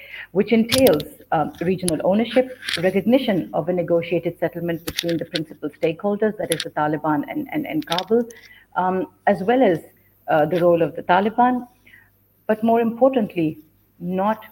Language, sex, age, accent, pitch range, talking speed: Turkish, female, 50-69, Indian, 165-210 Hz, 150 wpm